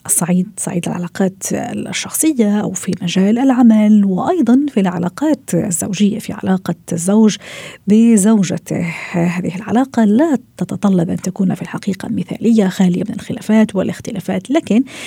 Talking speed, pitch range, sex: 120 wpm, 180-220 Hz, female